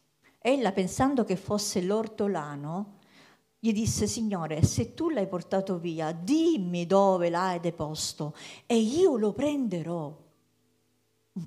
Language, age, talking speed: Italian, 50-69, 115 wpm